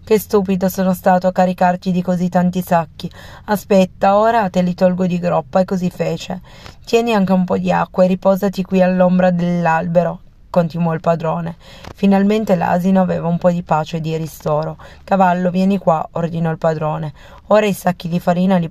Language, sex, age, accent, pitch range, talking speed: Italian, female, 30-49, native, 165-185 Hz, 180 wpm